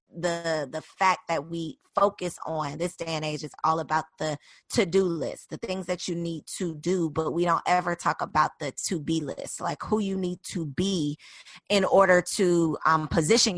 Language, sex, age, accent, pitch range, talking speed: English, female, 20-39, American, 160-195 Hz, 195 wpm